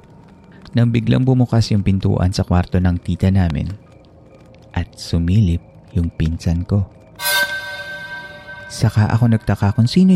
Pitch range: 90-120 Hz